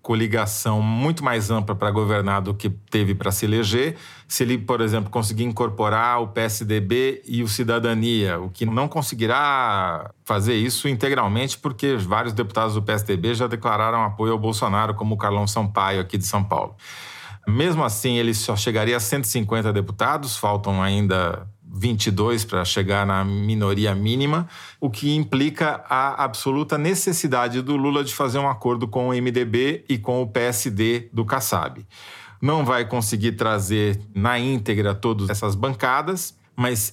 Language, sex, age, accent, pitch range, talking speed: Portuguese, male, 40-59, Brazilian, 105-130 Hz, 155 wpm